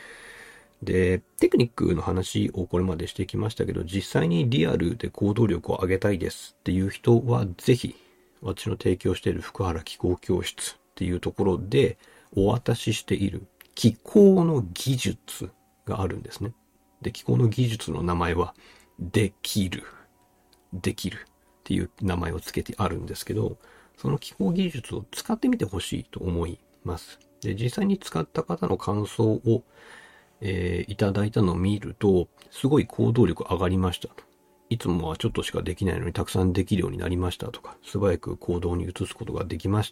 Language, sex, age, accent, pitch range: Japanese, male, 50-69, native, 90-110 Hz